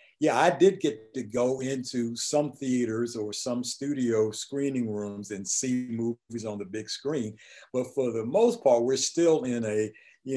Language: English